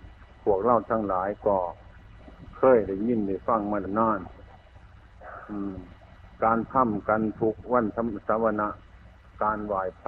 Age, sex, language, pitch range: 60-79, male, Chinese, 95-115 Hz